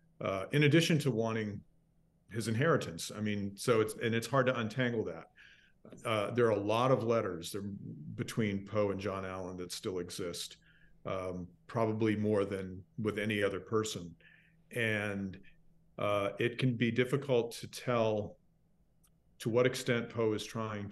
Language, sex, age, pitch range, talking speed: English, male, 40-59, 100-125 Hz, 155 wpm